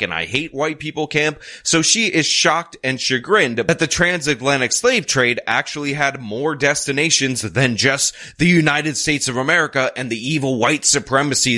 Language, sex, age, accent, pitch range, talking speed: English, male, 30-49, American, 115-150 Hz, 170 wpm